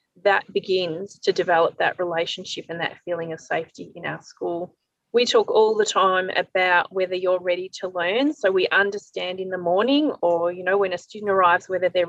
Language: English